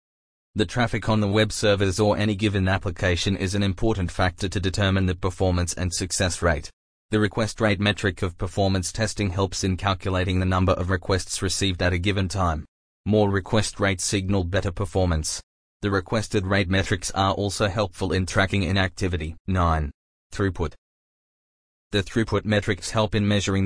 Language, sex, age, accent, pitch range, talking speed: English, male, 20-39, Australian, 90-100 Hz, 160 wpm